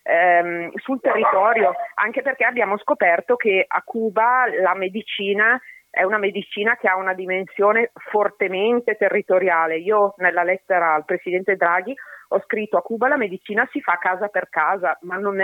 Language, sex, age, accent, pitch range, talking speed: Italian, female, 40-59, native, 180-230 Hz, 155 wpm